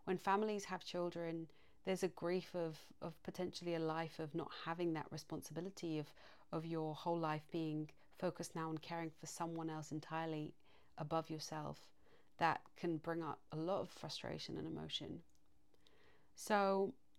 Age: 30-49